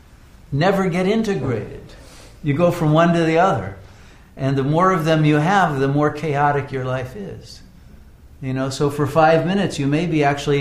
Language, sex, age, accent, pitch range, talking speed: English, male, 60-79, American, 130-160 Hz, 185 wpm